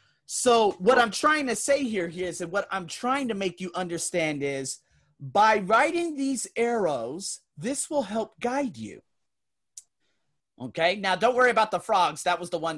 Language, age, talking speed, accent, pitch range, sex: English, 30-49, 175 wpm, American, 175-245 Hz, male